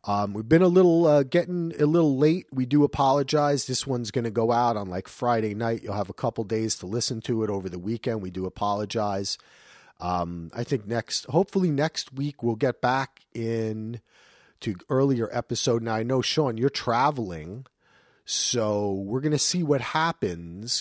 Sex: male